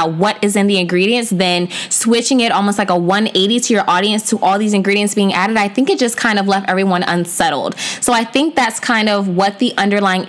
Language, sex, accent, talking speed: English, female, American, 225 wpm